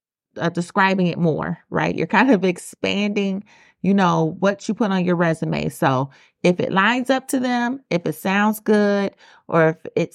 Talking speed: 185 wpm